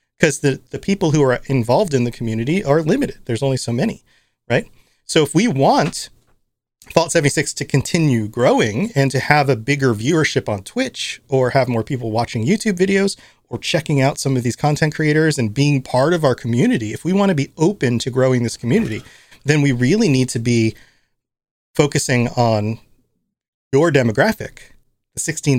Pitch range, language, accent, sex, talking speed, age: 120-155 Hz, English, American, male, 180 wpm, 30-49